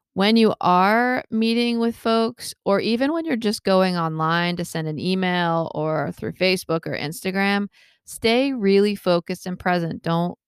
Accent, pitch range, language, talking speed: American, 160-200 Hz, English, 160 wpm